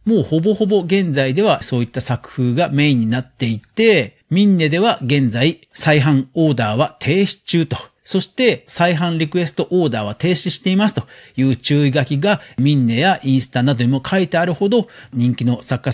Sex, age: male, 40-59